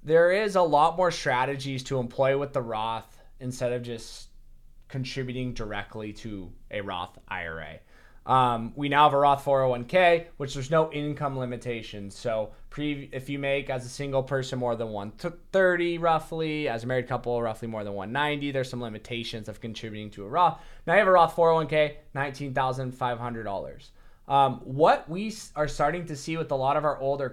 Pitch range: 125-160 Hz